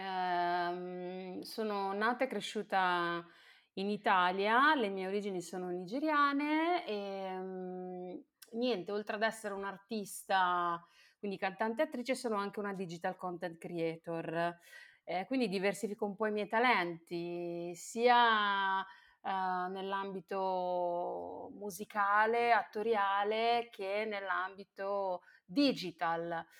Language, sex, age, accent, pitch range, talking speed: Italian, female, 30-49, native, 180-215 Hz, 100 wpm